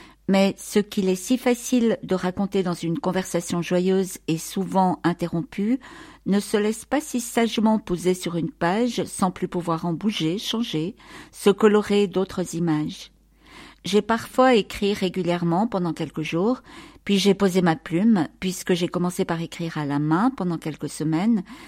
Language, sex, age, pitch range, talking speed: English, female, 50-69, 175-215 Hz, 160 wpm